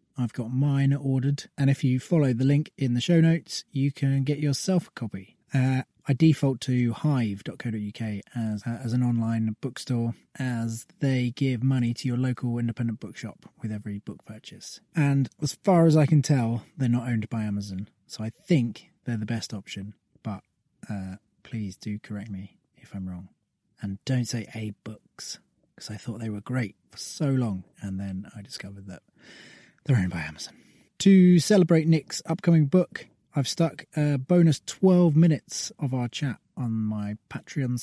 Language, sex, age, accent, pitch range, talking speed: English, male, 20-39, British, 110-150 Hz, 180 wpm